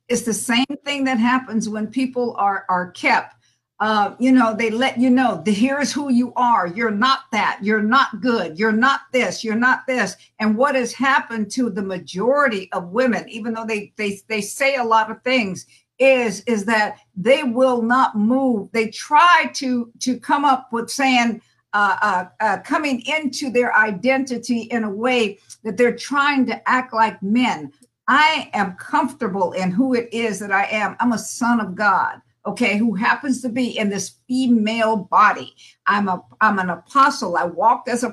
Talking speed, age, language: 185 wpm, 50-69, English